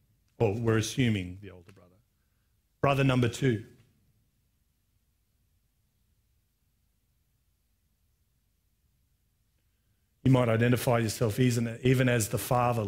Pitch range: 105-135 Hz